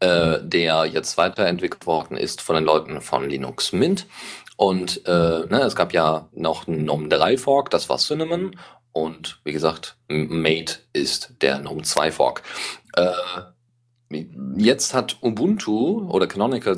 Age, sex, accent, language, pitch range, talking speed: 40-59, male, German, German, 80-130 Hz, 145 wpm